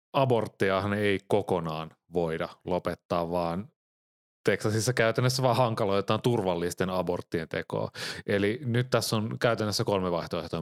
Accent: native